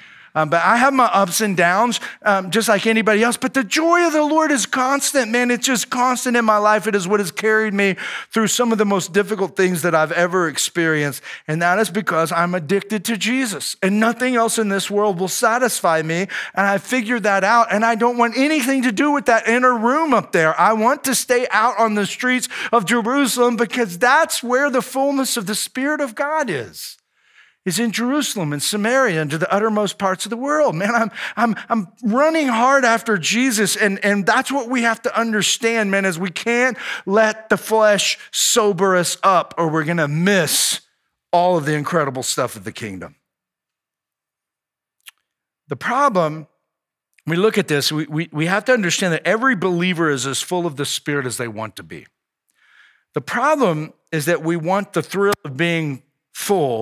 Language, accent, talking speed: English, American, 200 wpm